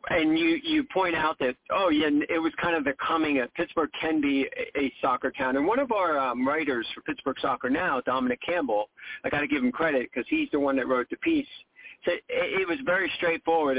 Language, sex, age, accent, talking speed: English, male, 50-69, American, 235 wpm